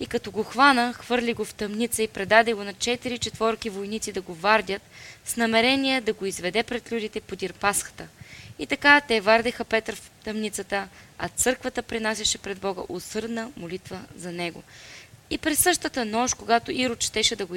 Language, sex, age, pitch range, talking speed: Bulgarian, female, 20-39, 190-235 Hz, 180 wpm